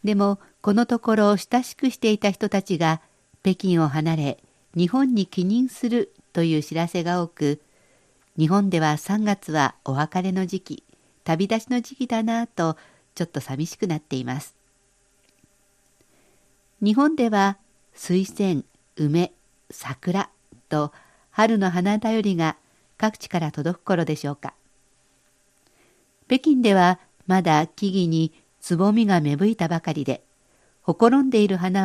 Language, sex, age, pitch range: Japanese, female, 50-69, 155-220 Hz